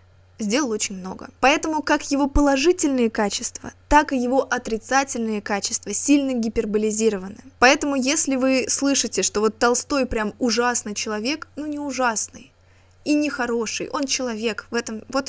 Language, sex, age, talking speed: Russian, female, 20-39, 135 wpm